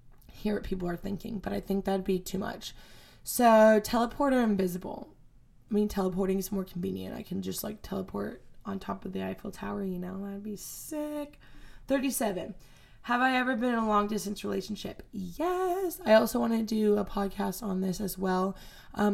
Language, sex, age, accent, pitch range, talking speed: English, female, 20-39, American, 185-220 Hz, 190 wpm